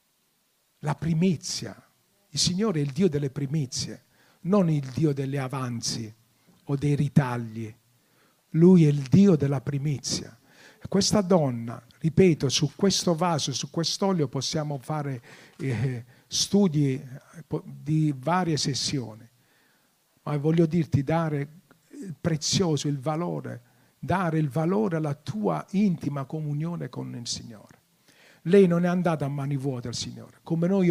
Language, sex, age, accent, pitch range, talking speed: Italian, male, 50-69, native, 140-165 Hz, 130 wpm